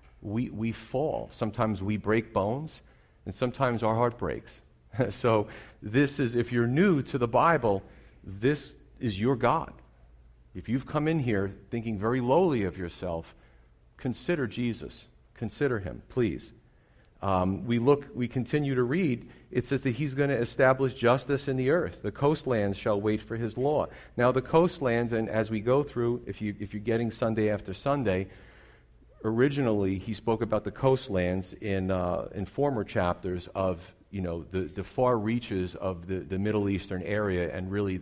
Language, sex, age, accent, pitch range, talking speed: English, male, 40-59, American, 95-125 Hz, 170 wpm